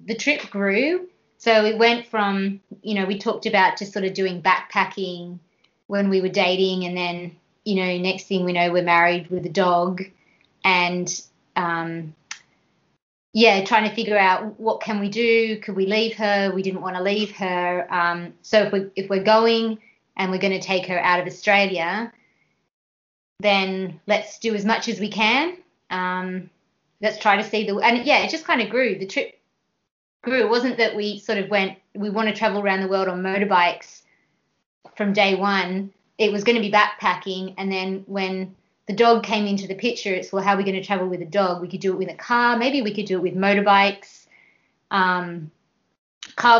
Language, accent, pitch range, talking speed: English, Australian, 185-215 Hz, 200 wpm